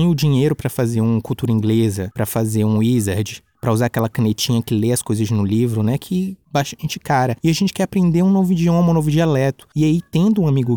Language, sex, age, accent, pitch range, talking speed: Portuguese, male, 20-39, Brazilian, 120-170 Hz, 230 wpm